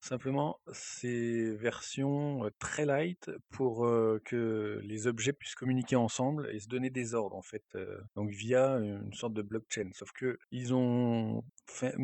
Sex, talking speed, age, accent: male, 160 wpm, 40-59, French